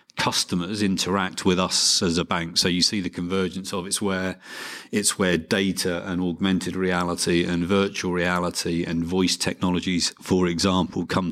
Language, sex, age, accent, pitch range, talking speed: English, male, 40-59, British, 90-100 Hz, 160 wpm